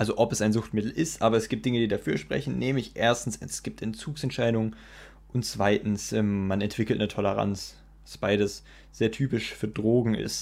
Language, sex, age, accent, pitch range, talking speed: German, male, 20-39, German, 105-135 Hz, 180 wpm